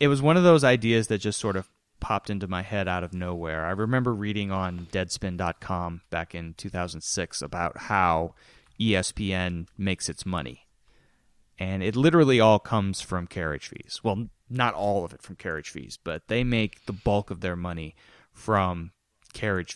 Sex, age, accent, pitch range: male, 30-49, American, 90-110 Hz